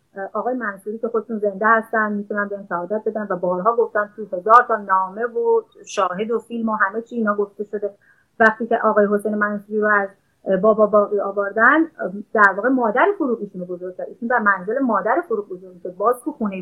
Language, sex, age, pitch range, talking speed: Persian, female, 30-49, 200-240 Hz, 175 wpm